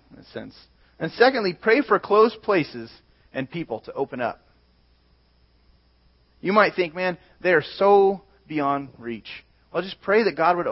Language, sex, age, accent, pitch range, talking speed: English, male, 30-49, American, 115-185 Hz, 145 wpm